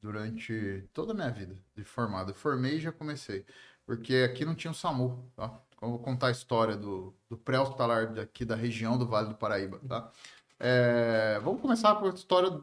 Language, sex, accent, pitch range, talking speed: Portuguese, male, Brazilian, 120-175 Hz, 180 wpm